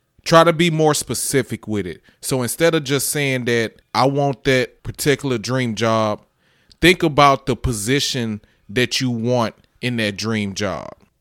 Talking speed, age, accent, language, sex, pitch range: 160 wpm, 20-39, American, English, male, 115-145 Hz